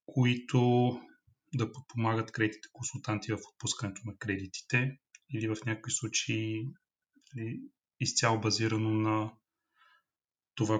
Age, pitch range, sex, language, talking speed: 30-49, 105-120 Hz, male, Bulgarian, 100 wpm